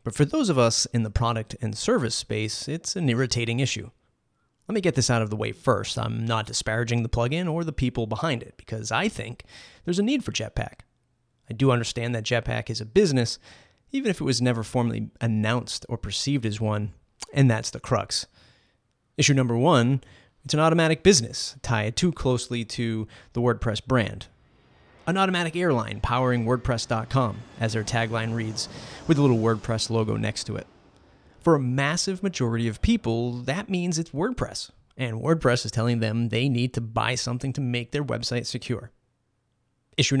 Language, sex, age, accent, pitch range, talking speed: English, male, 30-49, American, 115-135 Hz, 180 wpm